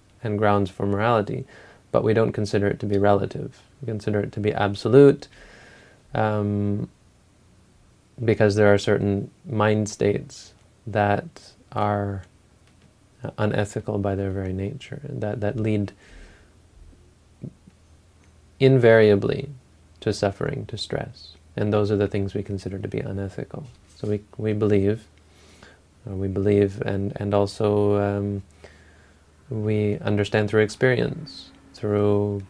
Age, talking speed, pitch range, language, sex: 20-39, 125 wpm, 100-110 Hz, English, male